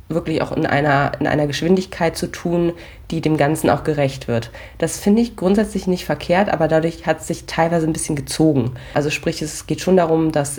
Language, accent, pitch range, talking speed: German, German, 140-165 Hz, 205 wpm